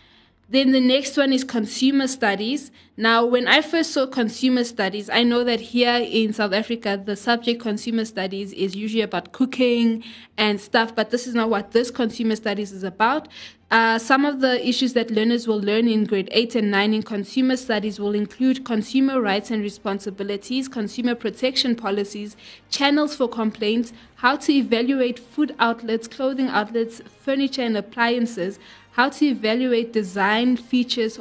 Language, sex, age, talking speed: English, female, 20-39, 165 wpm